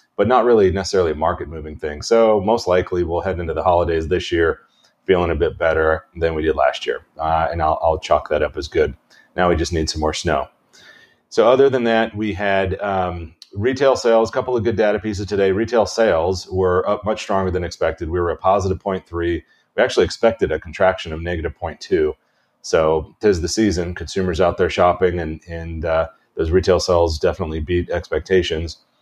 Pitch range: 85-100 Hz